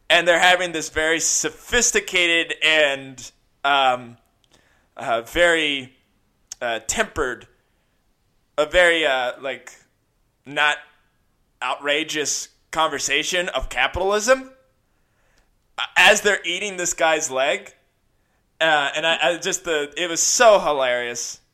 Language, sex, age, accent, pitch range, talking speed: English, male, 20-39, American, 135-175 Hz, 105 wpm